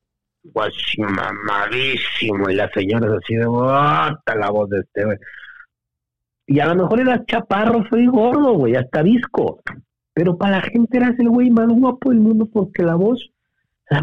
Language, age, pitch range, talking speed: Spanish, 50-69, 110-175 Hz, 165 wpm